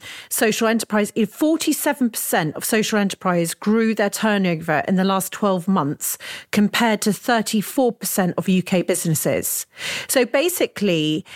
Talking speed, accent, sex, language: 115 wpm, British, female, English